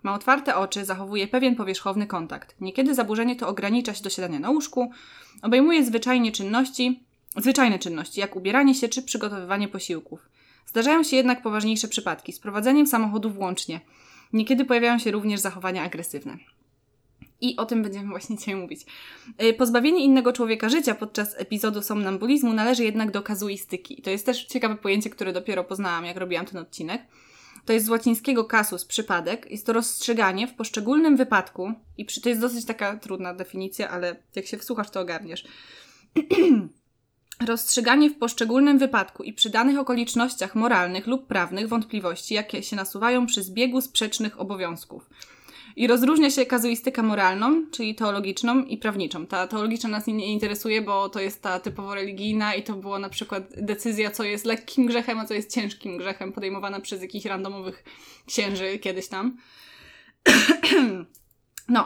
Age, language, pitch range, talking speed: 20-39, Polish, 195-245 Hz, 155 wpm